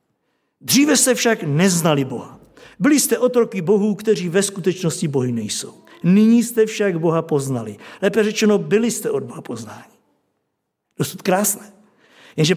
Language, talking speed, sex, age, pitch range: Czech, 140 wpm, male, 50-69, 185-235 Hz